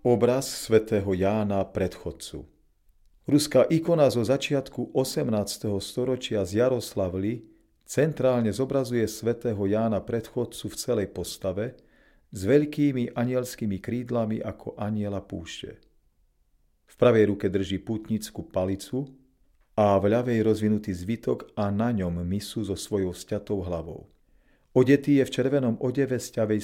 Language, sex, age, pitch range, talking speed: Slovak, male, 40-59, 95-120 Hz, 115 wpm